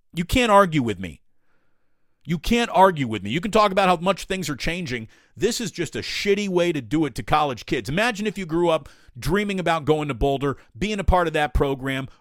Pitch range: 140-185 Hz